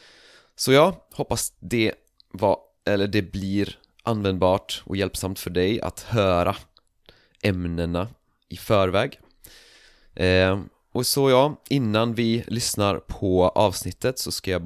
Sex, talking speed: male, 125 wpm